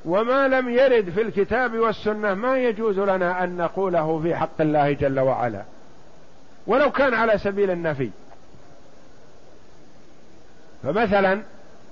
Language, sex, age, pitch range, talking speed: Arabic, male, 50-69, 170-215 Hz, 110 wpm